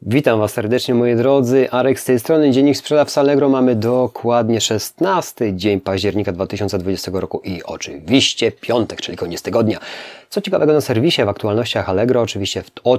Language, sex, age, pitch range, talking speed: Polish, male, 30-49, 100-135 Hz, 155 wpm